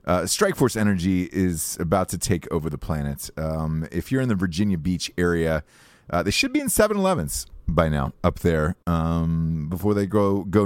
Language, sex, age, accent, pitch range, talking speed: English, male, 30-49, American, 80-110 Hz, 190 wpm